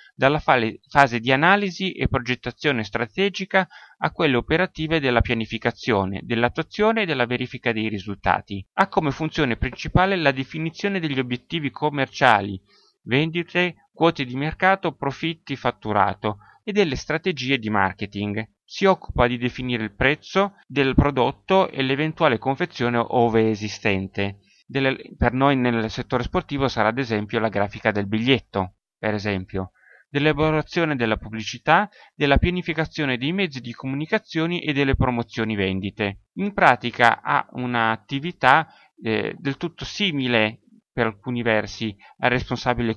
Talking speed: 125 wpm